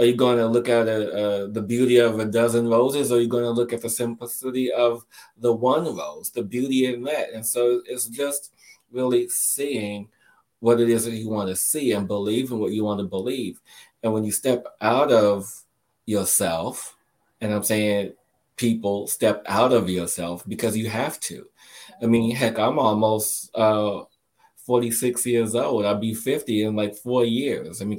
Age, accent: 20-39, American